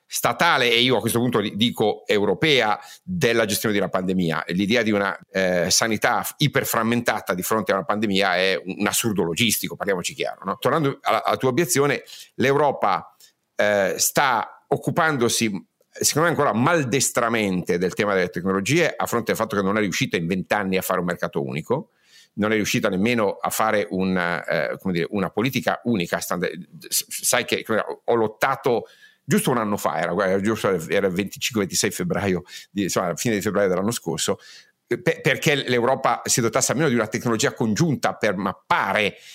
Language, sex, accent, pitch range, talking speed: Italian, male, native, 105-130 Hz, 165 wpm